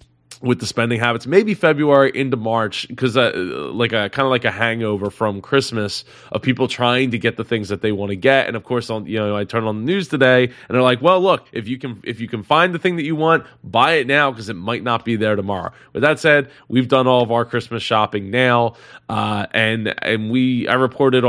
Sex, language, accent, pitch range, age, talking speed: male, English, American, 105-130 Hz, 20-39, 245 wpm